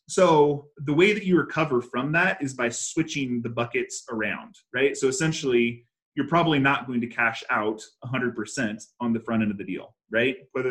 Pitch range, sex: 115-155 Hz, male